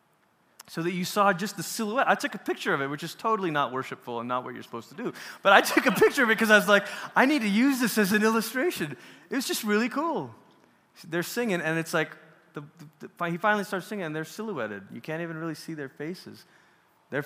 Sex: male